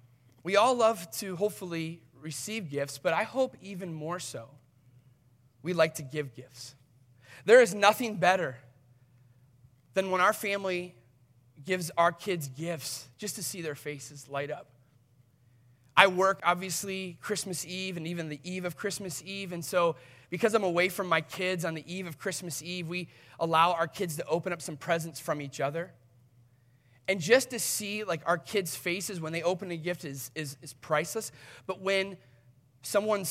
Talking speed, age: 170 wpm, 30-49